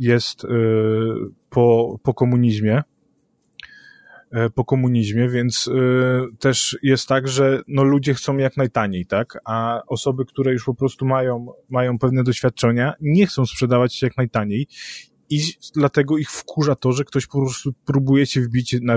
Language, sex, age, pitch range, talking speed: Polish, male, 20-39, 120-140 Hz, 140 wpm